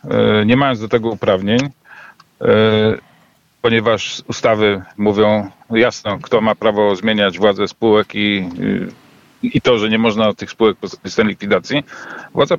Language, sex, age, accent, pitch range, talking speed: Polish, male, 40-59, native, 105-125 Hz, 125 wpm